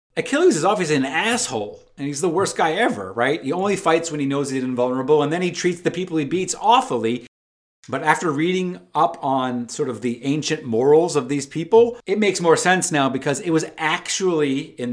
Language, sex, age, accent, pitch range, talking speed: English, male, 30-49, American, 125-175 Hz, 210 wpm